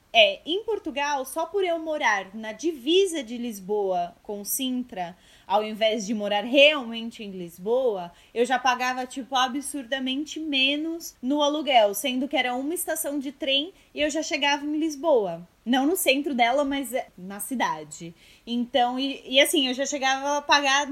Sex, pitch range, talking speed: female, 230-310 Hz, 165 wpm